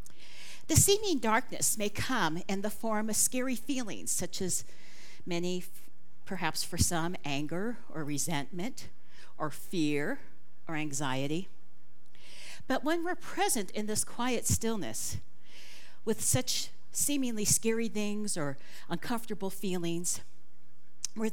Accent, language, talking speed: American, English, 115 wpm